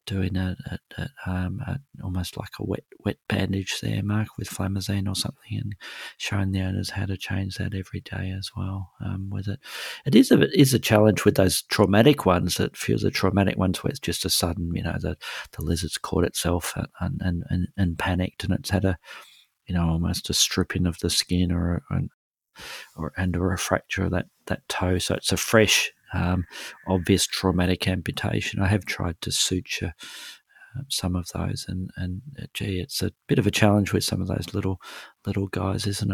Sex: male